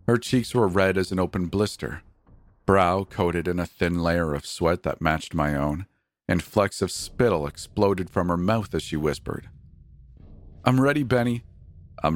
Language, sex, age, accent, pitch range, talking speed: English, male, 40-59, American, 80-100 Hz, 175 wpm